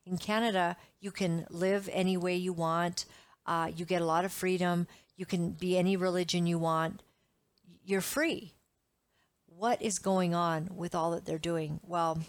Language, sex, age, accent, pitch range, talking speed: English, female, 50-69, American, 170-195 Hz, 170 wpm